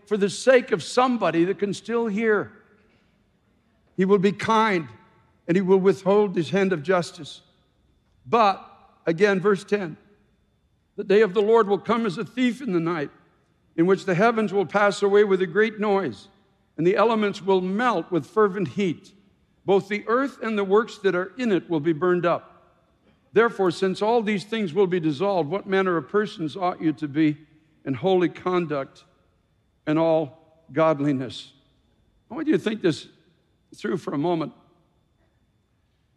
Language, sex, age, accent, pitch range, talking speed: English, male, 60-79, American, 145-200 Hz, 170 wpm